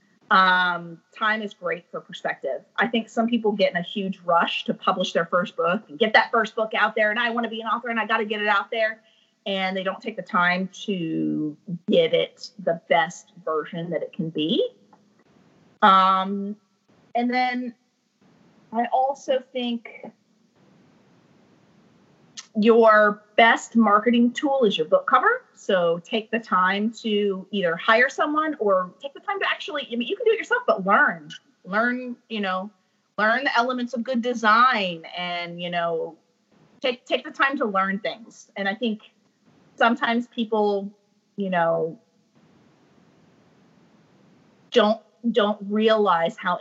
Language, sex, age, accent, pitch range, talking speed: English, female, 30-49, American, 190-240 Hz, 160 wpm